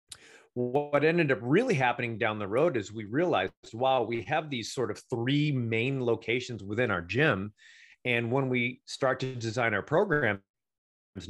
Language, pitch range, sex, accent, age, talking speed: English, 110-140 Hz, male, American, 30-49, 165 wpm